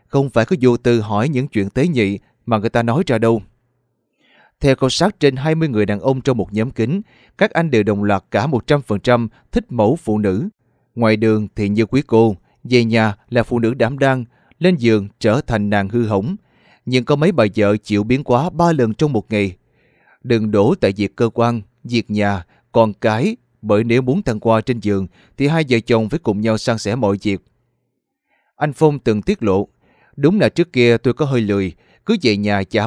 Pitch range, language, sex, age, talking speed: 105-135 Hz, Vietnamese, male, 20-39, 215 wpm